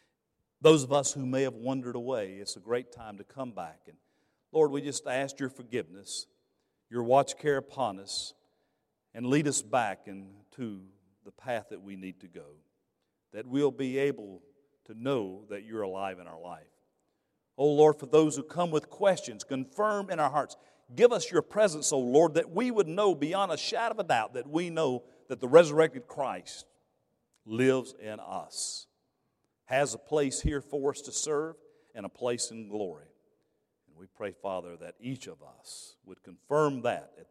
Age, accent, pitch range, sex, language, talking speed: 50-69, American, 100-145 Hz, male, English, 180 wpm